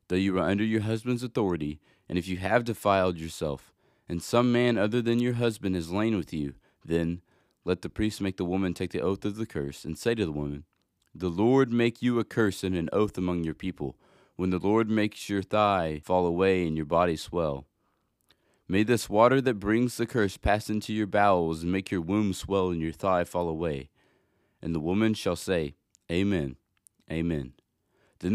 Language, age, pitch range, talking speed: English, 30-49, 85-110 Hz, 200 wpm